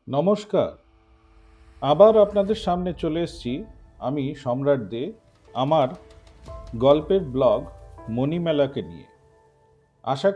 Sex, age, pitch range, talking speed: male, 50-69, 135-200 Hz, 85 wpm